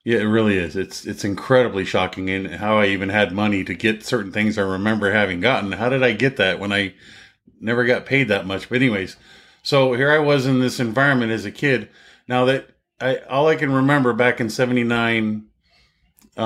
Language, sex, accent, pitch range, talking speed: English, male, American, 105-125 Hz, 205 wpm